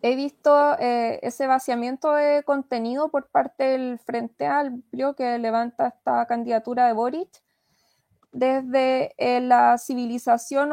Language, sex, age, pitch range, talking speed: Spanish, female, 20-39, 240-280 Hz, 125 wpm